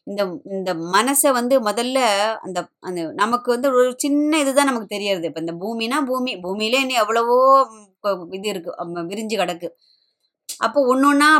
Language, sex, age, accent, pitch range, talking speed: Tamil, male, 20-39, native, 195-250 Hz, 75 wpm